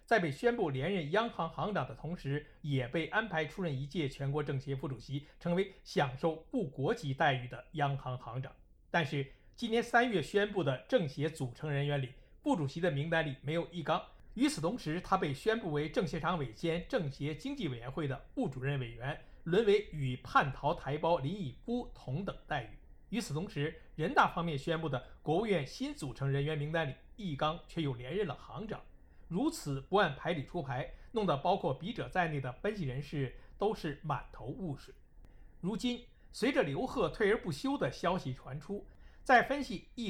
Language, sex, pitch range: Chinese, male, 140-200 Hz